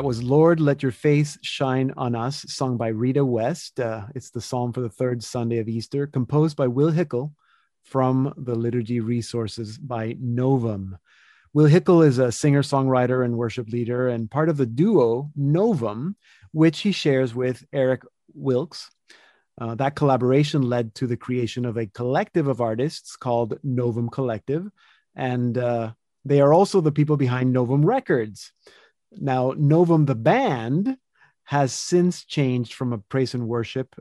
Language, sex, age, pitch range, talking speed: English, male, 30-49, 120-145 Hz, 160 wpm